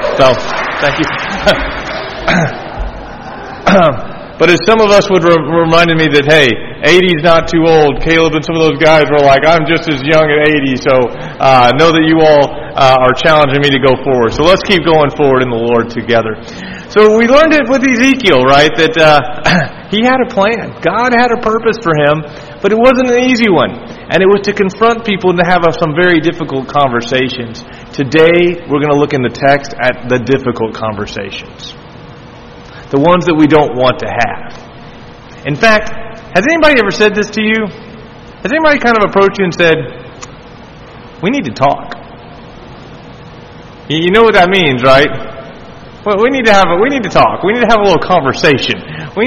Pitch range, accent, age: 140-200 Hz, American, 40-59